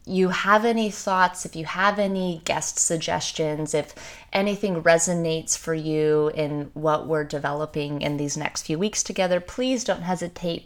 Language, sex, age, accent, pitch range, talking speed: English, female, 20-39, American, 155-195 Hz, 160 wpm